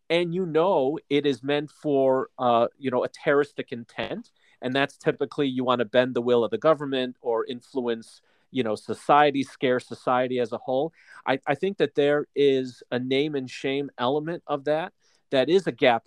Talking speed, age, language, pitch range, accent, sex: 195 wpm, 40-59, English, 120-145 Hz, American, male